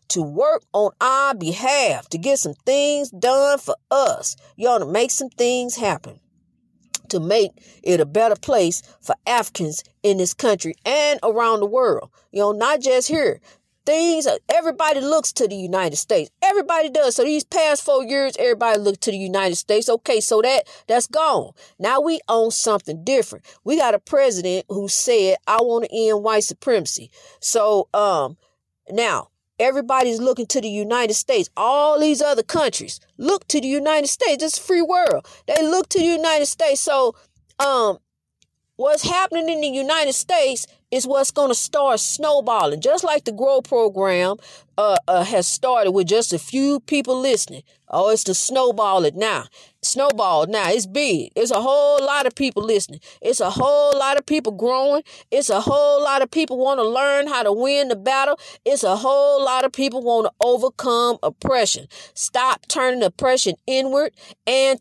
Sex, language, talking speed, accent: female, English, 175 wpm, American